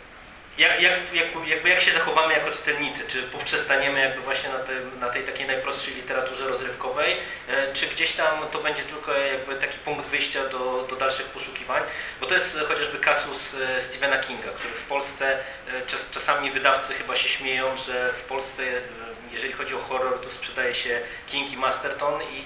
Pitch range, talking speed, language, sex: 130-140 Hz, 165 wpm, Polish, male